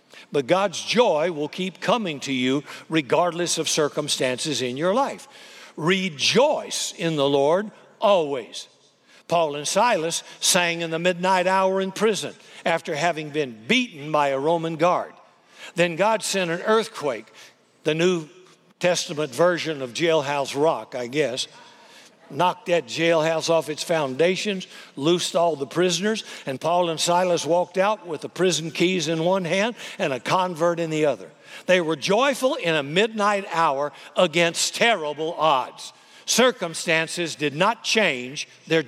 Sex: male